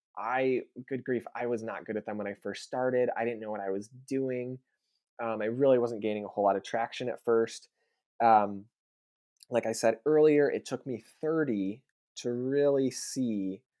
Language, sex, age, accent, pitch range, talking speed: English, male, 20-39, American, 105-130 Hz, 190 wpm